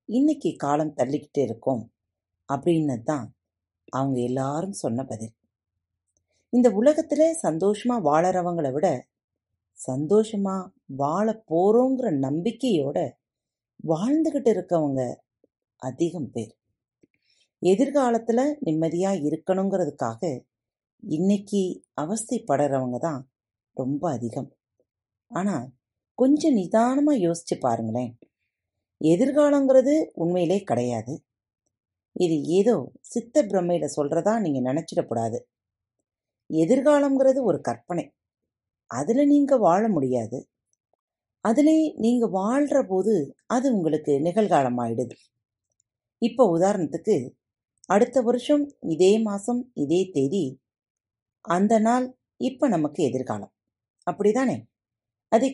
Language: Tamil